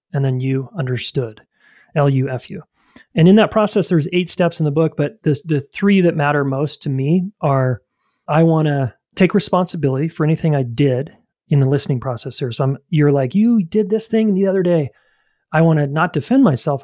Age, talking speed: 30-49, 210 wpm